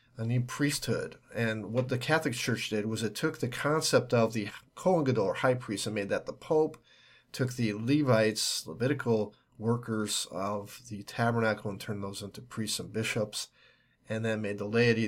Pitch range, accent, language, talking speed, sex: 110-130 Hz, American, English, 185 wpm, male